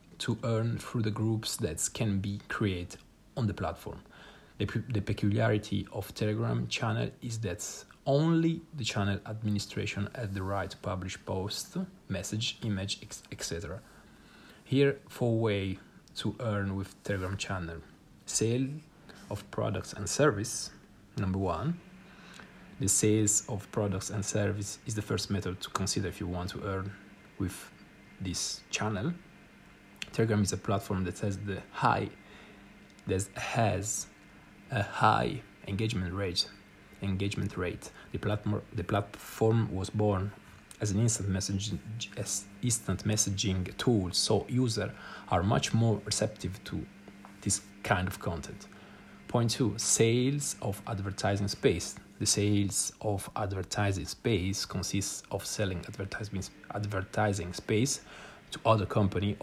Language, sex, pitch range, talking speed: Italian, male, 100-110 Hz, 120 wpm